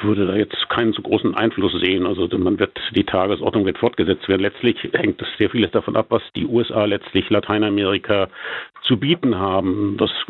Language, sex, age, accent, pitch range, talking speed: German, male, 50-69, German, 95-115 Hz, 185 wpm